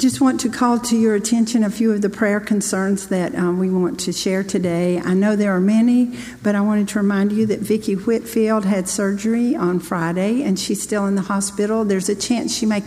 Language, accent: English, American